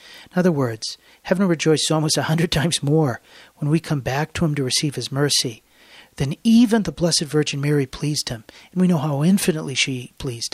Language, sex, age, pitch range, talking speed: English, male, 40-59, 130-165 Hz, 200 wpm